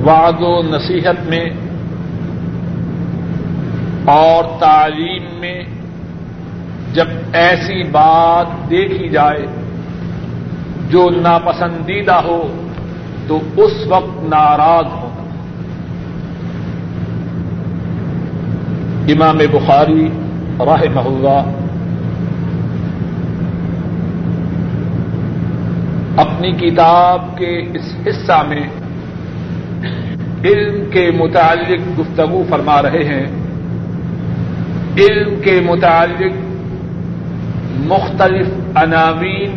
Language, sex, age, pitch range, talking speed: Urdu, male, 50-69, 155-180 Hz, 65 wpm